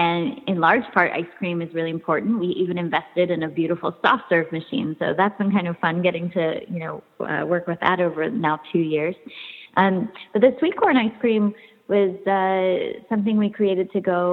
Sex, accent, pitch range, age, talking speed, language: female, American, 170-200 Hz, 20-39, 210 wpm, English